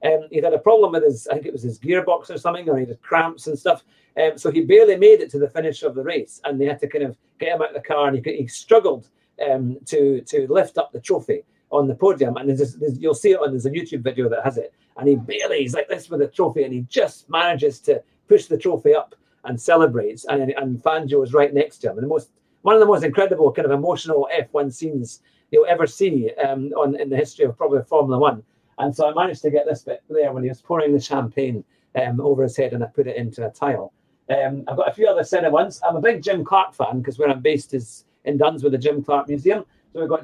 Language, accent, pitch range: English, British, 135-195 Hz